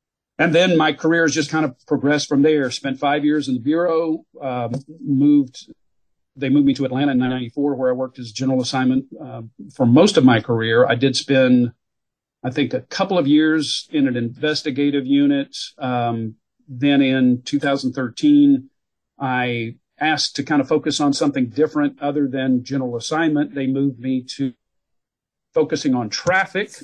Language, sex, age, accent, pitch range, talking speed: English, male, 50-69, American, 125-150 Hz, 170 wpm